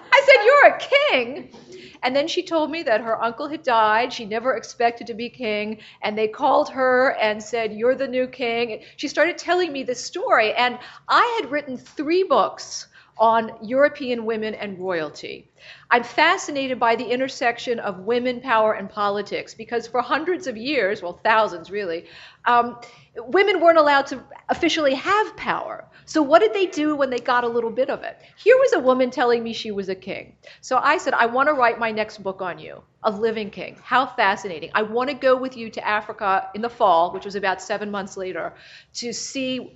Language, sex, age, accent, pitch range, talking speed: English, female, 40-59, American, 220-300 Hz, 195 wpm